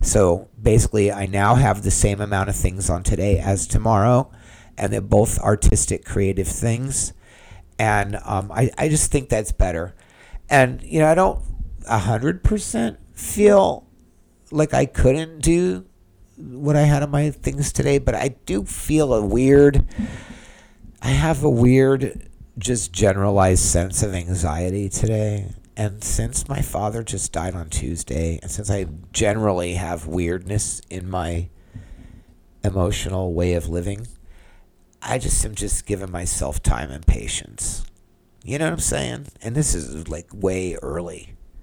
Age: 50-69